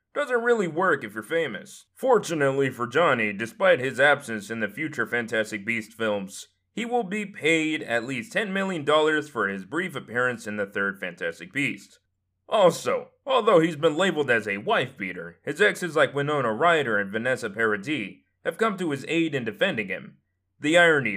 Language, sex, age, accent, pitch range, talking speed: English, male, 20-39, American, 105-180 Hz, 175 wpm